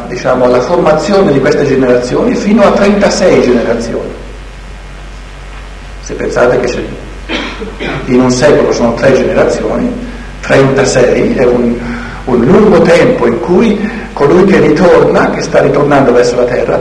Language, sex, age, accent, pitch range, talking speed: Italian, male, 60-79, native, 120-175 Hz, 130 wpm